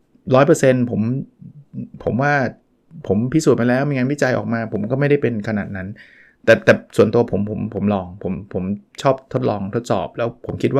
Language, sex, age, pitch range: Thai, male, 20-39, 110-140 Hz